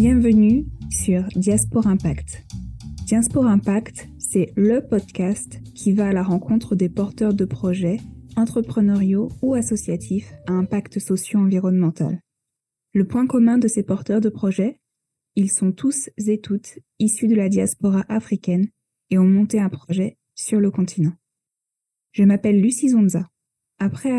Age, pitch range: 10-29, 185-220 Hz